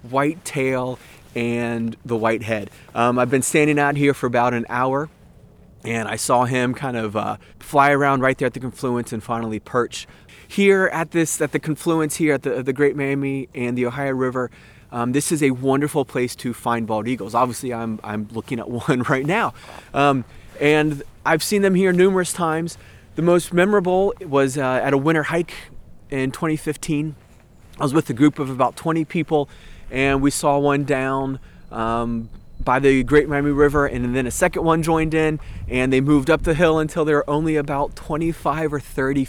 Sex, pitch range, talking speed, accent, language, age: male, 115-145 Hz, 195 wpm, American, English, 30-49